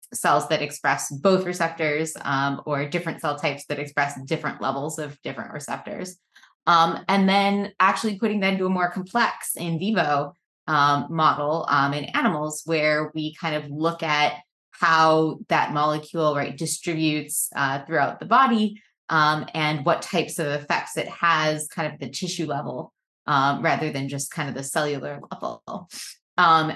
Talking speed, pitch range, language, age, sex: 160 wpm, 150-180 Hz, English, 20-39, female